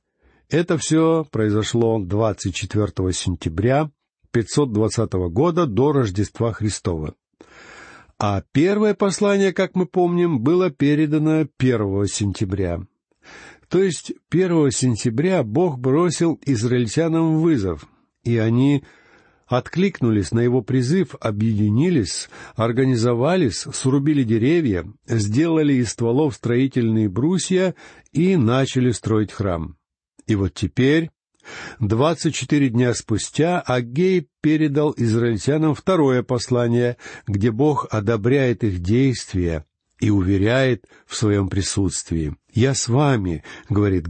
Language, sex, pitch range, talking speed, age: Russian, male, 105-150 Hz, 100 wpm, 60-79